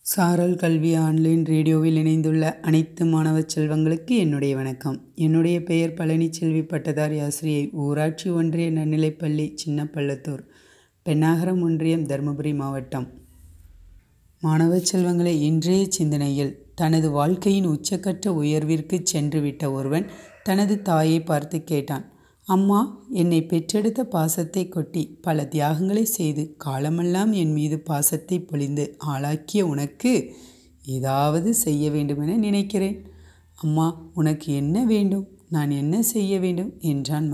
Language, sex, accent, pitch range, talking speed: Tamil, female, native, 150-180 Hz, 110 wpm